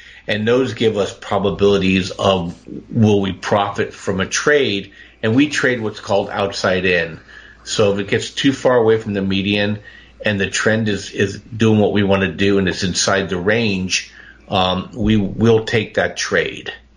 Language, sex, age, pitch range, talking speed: English, male, 50-69, 95-110 Hz, 180 wpm